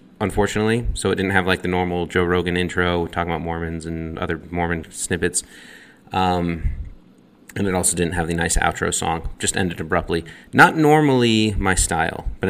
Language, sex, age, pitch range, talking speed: English, male, 30-49, 85-100 Hz, 175 wpm